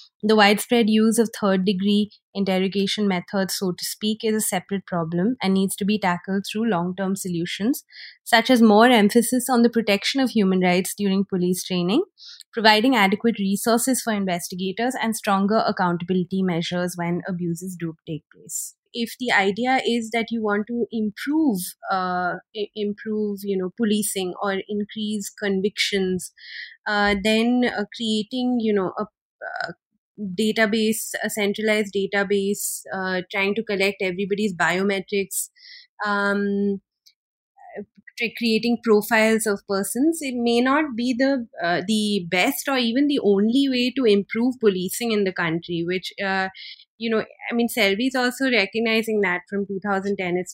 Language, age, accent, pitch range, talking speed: English, 20-39, Indian, 195-225 Hz, 145 wpm